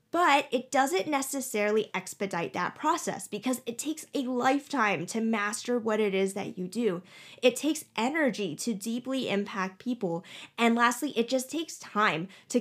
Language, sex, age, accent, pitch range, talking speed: English, female, 10-29, American, 200-265 Hz, 160 wpm